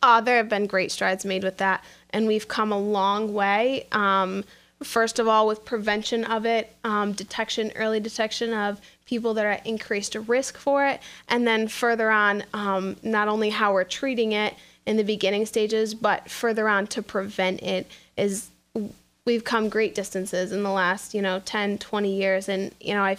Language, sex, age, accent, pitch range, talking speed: English, female, 10-29, American, 200-225 Hz, 190 wpm